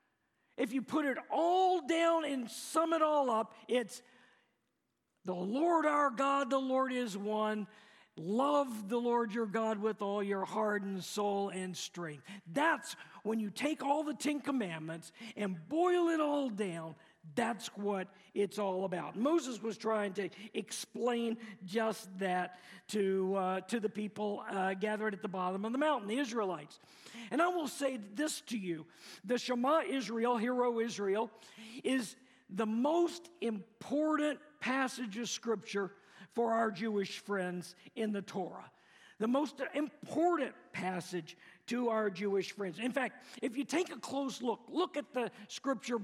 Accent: American